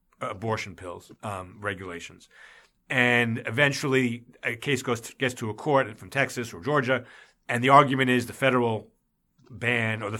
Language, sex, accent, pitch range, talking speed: English, male, American, 110-140 Hz, 160 wpm